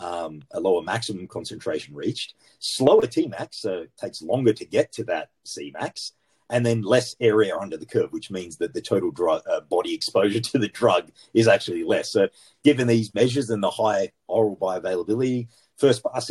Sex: male